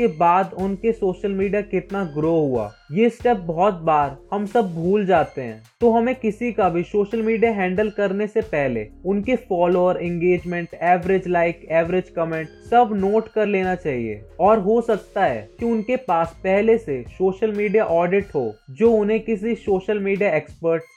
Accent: native